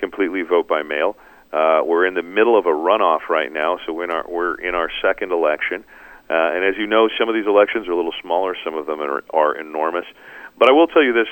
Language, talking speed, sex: English, 245 wpm, male